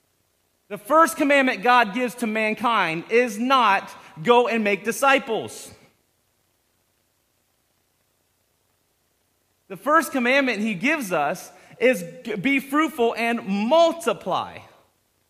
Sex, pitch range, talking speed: male, 140-220 Hz, 95 wpm